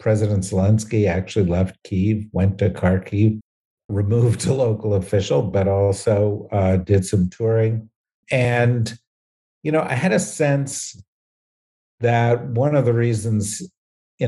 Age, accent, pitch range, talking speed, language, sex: 50-69, American, 100-120 Hz, 130 wpm, English, male